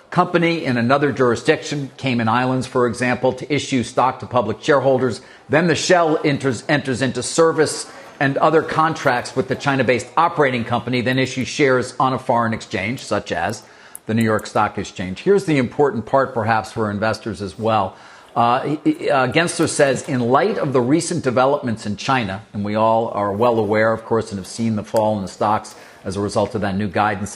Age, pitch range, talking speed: 50-69, 110-140 Hz, 190 wpm